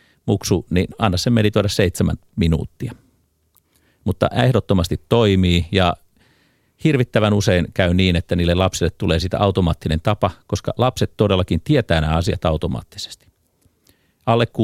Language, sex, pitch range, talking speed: Finnish, male, 85-105 Hz, 125 wpm